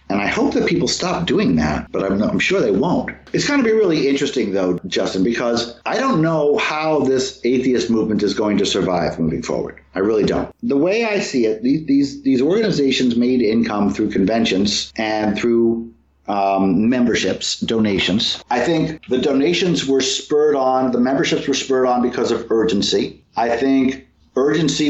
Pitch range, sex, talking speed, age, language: 110-140 Hz, male, 180 wpm, 50-69, English